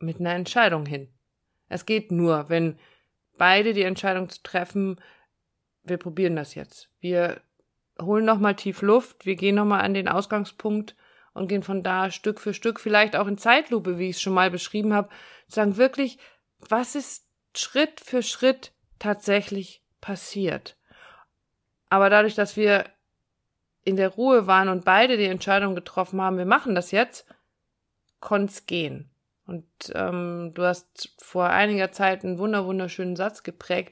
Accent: German